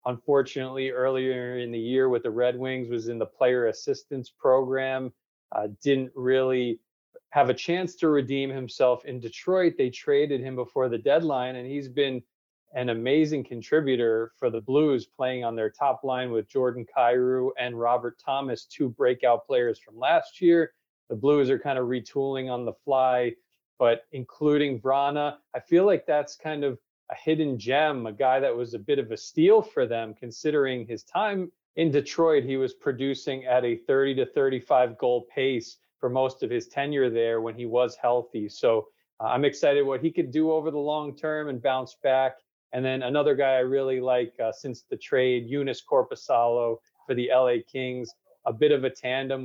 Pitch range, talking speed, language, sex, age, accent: 125-150 Hz, 185 wpm, English, male, 40-59, American